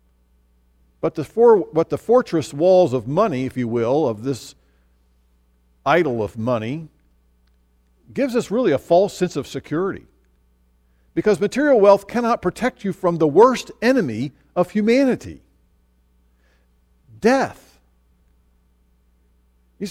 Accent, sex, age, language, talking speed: American, male, 50-69, English, 120 wpm